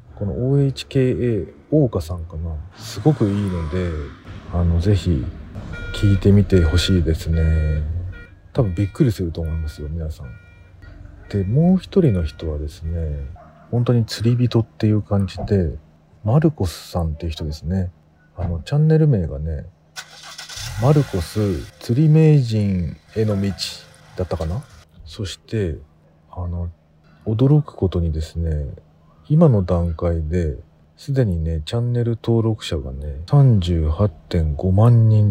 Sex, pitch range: male, 80-110 Hz